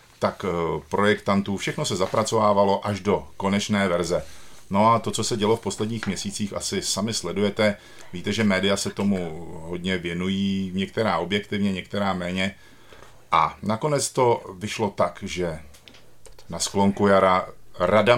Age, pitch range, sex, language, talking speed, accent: 50-69, 90-110 Hz, male, Czech, 140 wpm, native